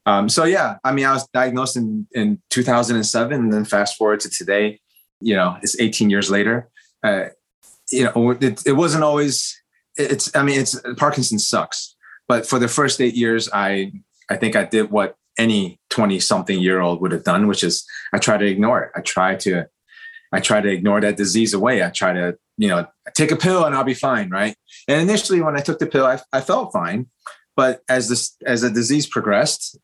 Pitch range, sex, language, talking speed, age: 105-130 Hz, male, English, 210 wpm, 30-49